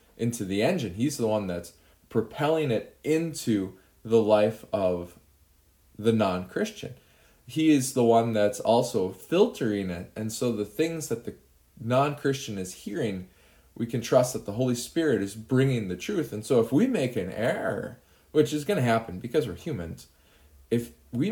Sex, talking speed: male, 175 wpm